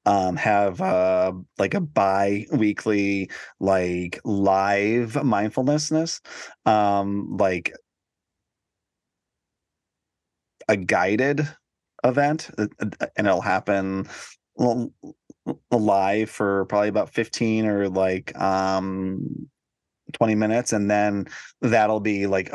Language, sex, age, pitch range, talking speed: English, male, 30-49, 95-105 Hz, 85 wpm